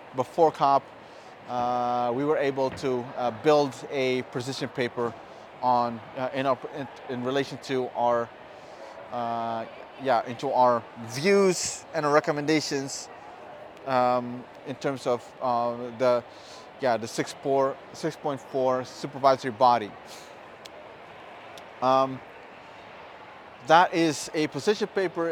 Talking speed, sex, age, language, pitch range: 110 wpm, male, 30-49, English, 125-155 Hz